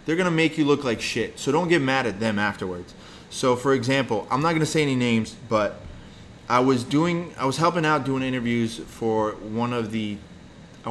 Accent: American